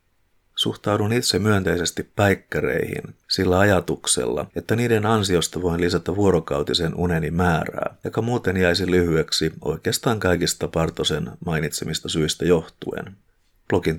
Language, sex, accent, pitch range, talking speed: Finnish, male, native, 85-100 Hz, 105 wpm